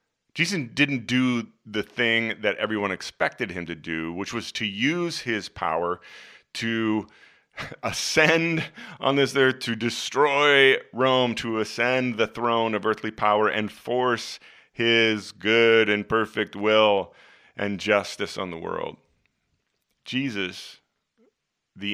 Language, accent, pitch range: English, American, 95-120 Hz